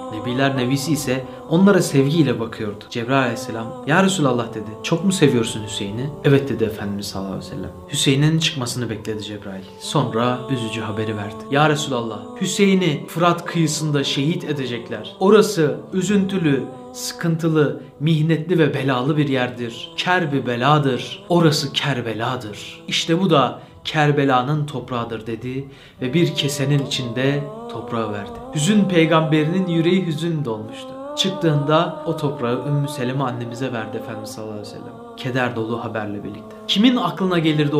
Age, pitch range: 30-49, 125-165 Hz